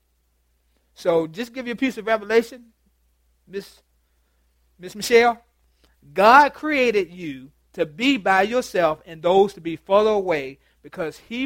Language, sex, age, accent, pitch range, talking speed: English, male, 40-59, American, 145-195 Hz, 135 wpm